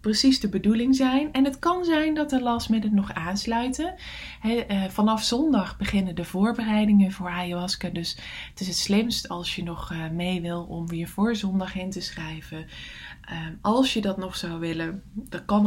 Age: 20-39